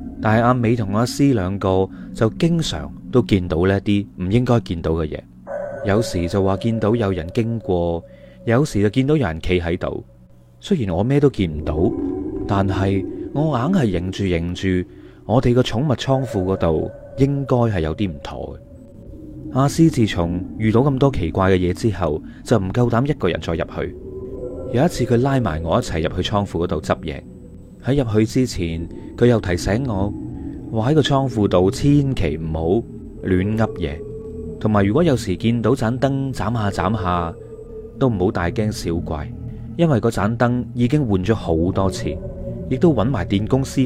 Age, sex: 30-49, male